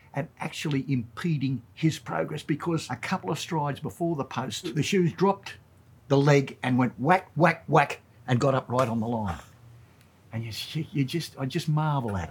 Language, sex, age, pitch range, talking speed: English, male, 60-79, 115-150 Hz, 185 wpm